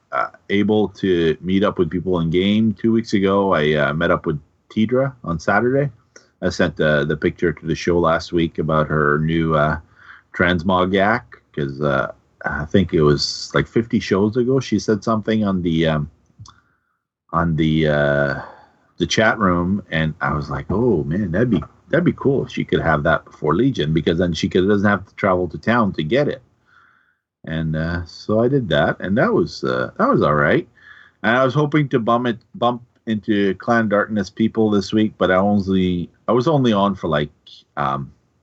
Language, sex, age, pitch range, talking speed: English, male, 30-49, 80-105 Hz, 195 wpm